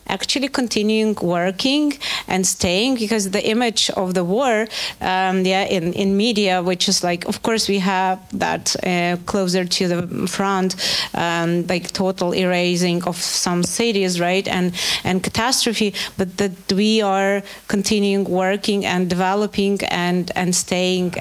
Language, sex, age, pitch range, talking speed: Ukrainian, female, 30-49, 185-225 Hz, 145 wpm